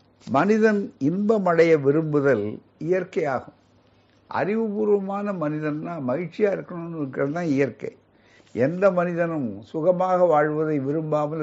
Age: 60-79